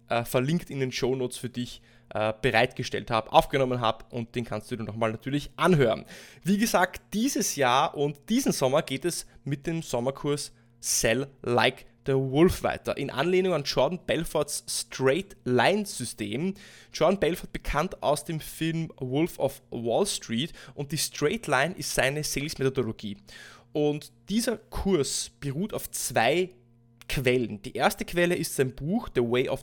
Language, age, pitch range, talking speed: German, 20-39, 125-170 Hz, 155 wpm